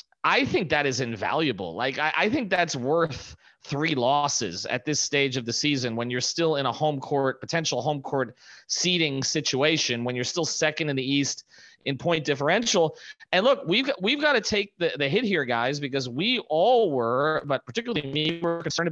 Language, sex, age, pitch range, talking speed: English, male, 30-49, 130-170 Hz, 195 wpm